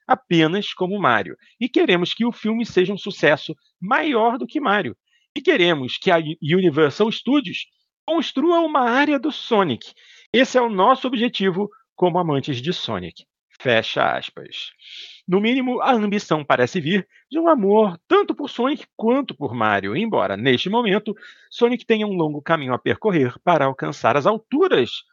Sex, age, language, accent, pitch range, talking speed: male, 40-59, Portuguese, Brazilian, 160-260 Hz, 160 wpm